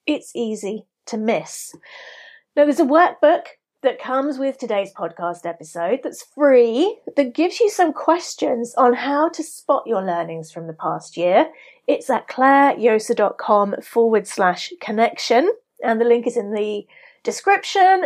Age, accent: 30-49, British